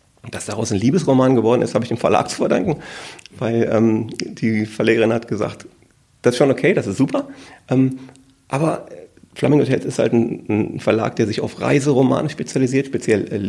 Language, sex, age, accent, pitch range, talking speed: German, male, 30-49, German, 110-140 Hz, 185 wpm